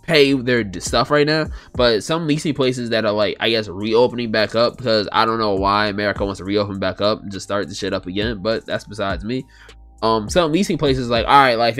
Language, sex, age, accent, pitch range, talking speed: English, male, 20-39, American, 110-145 Hz, 250 wpm